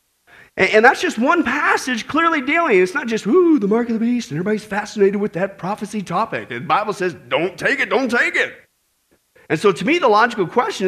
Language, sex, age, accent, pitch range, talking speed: English, male, 40-59, American, 195-270 Hz, 215 wpm